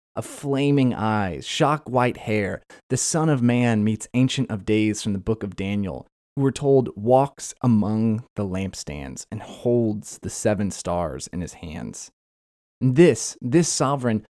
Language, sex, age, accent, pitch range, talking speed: English, male, 20-39, American, 110-145 Hz, 155 wpm